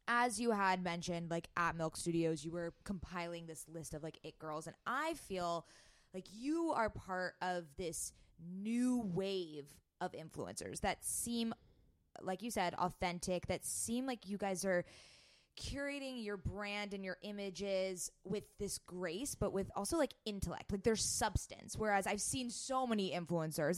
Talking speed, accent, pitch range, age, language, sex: 165 wpm, American, 170-230 Hz, 20-39, English, female